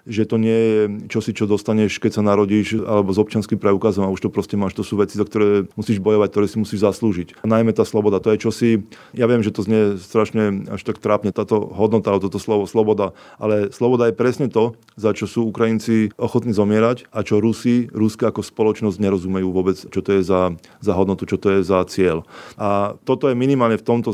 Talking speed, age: 215 wpm, 30-49